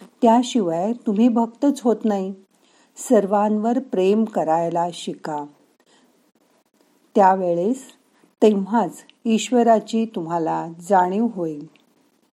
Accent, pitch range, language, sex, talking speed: native, 170-235 Hz, Marathi, female, 75 wpm